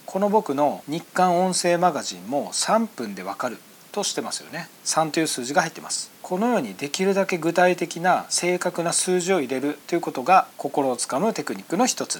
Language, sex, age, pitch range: Japanese, male, 40-59, 165-210 Hz